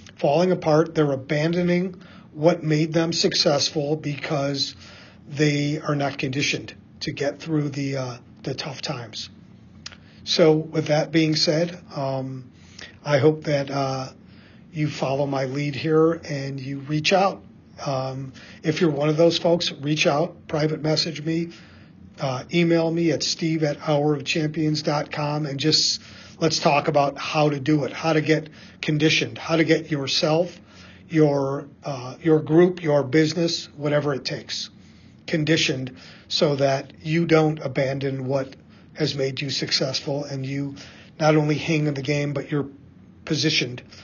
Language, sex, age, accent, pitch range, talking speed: English, male, 40-59, American, 140-160 Hz, 150 wpm